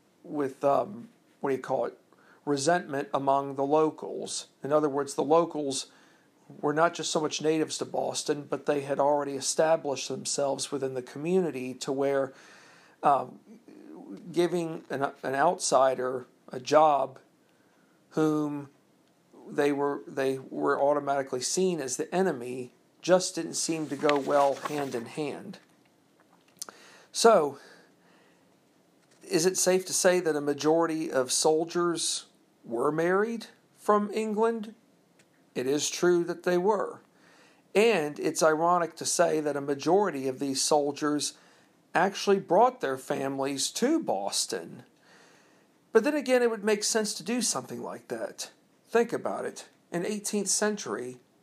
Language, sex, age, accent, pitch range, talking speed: English, male, 50-69, American, 140-185 Hz, 135 wpm